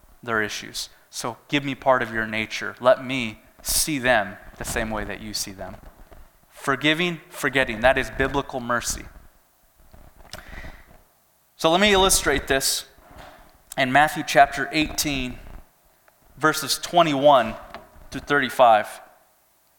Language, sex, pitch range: English, male, 120-155 Hz